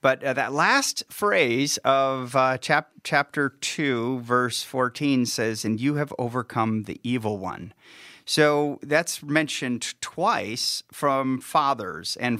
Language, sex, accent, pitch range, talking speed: English, male, American, 120-145 Hz, 125 wpm